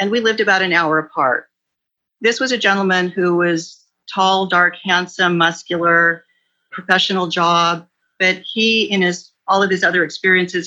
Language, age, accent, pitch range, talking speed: English, 40-59, American, 165-195 Hz, 155 wpm